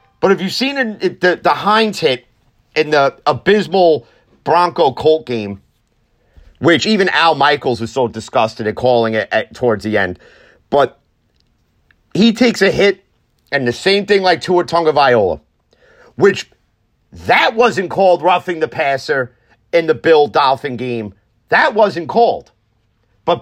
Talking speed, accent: 150 wpm, American